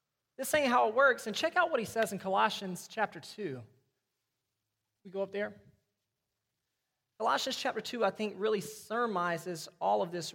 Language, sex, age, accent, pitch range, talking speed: English, male, 30-49, American, 145-195 Hz, 170 wpm